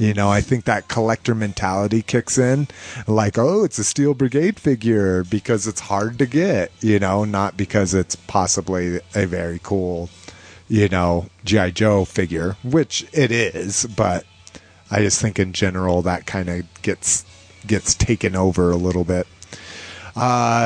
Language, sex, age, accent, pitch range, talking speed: English, male, 30-49, American, 95-120 Hz, 160 wpm